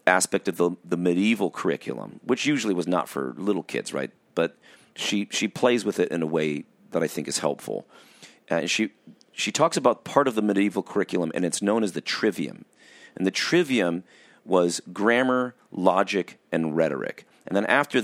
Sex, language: male, English